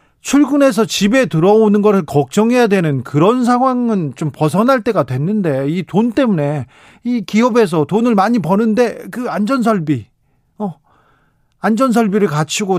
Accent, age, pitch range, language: native, 40-59, 145-210 Hz, Korean